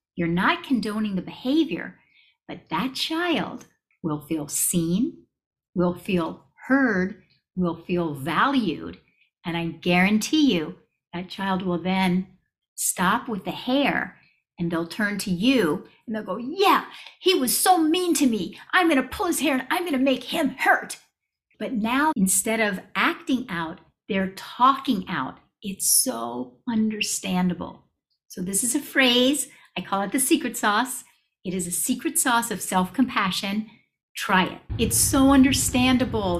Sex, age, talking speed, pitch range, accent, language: female, 50-69, 150 wpm, 175-265 Hz, American, English